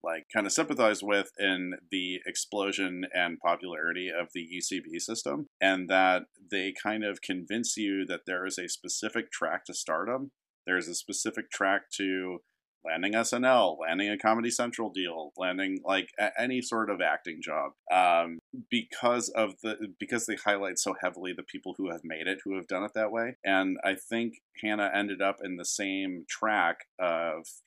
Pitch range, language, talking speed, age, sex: 90-105 Hz, English, 175 wpm, 40-59, male